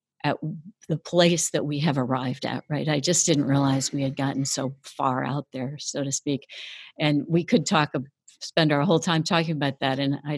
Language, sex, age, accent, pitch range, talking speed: English, female, 60-79, American, 140-170 Hz, 210 wpm